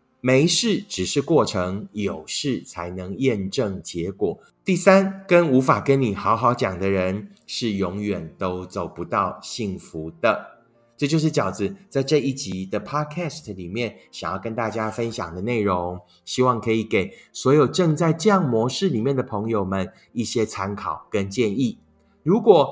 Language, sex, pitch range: Chinese, male, 105-160 Hz